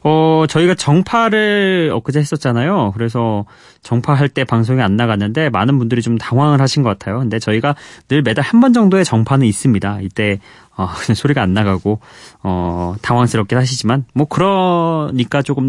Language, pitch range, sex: Korean, 110-165 Hz, male